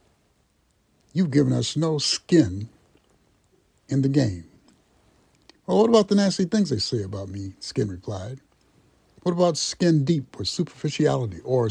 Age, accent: 60-79, American